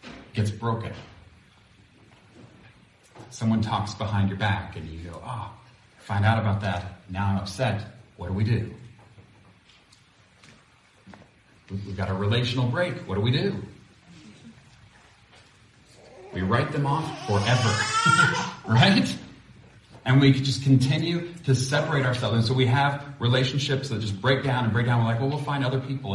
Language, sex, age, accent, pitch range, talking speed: English, male, 40-59, American, 105-130 Hz, 145 wpm